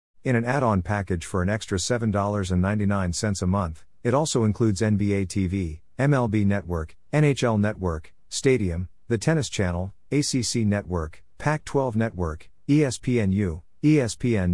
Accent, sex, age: American, male, 50-69